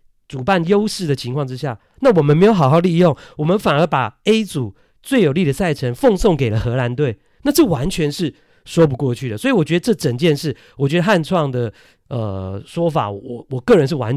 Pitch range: 120-165 Hz